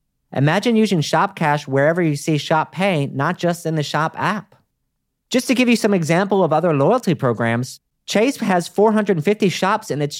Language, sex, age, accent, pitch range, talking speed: English, male, 40-59, American, 150-215 Hz, 175 wpm